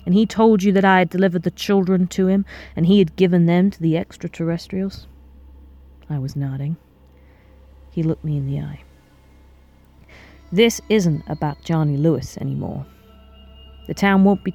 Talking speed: 160 wpm